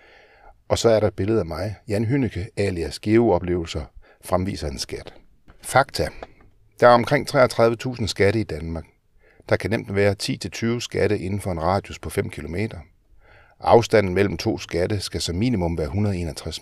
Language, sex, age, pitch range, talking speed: Danish, male, 60-79, 90-110 Hz, 165 wpm